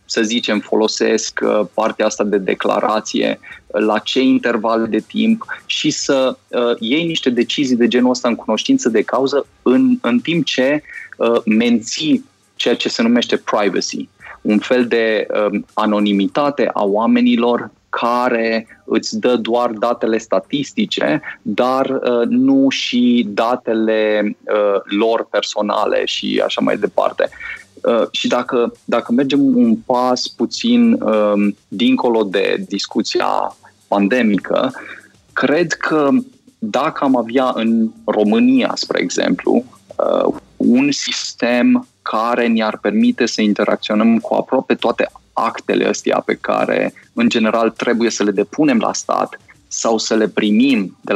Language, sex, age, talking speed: Romanian, male, 20-39, 120 wpm